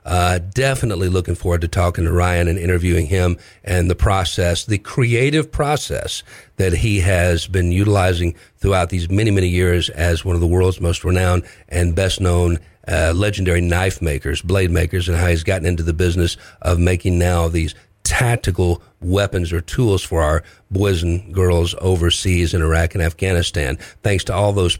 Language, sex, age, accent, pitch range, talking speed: English, male, 50-69, American, 85-105 Hz, 175 wpm